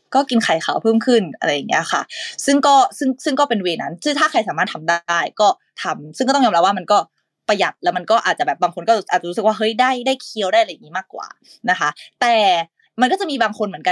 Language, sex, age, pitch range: Thai, female, 20-39, 180-250 Hz